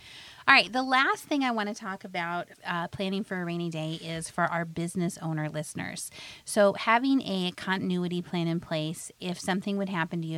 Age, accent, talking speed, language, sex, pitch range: 30-49, American, 200 wpm, English, female, 165-195 Hz